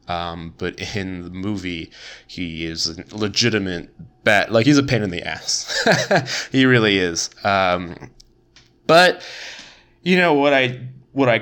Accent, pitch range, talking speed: American, 90-115 Hz, 140 wpm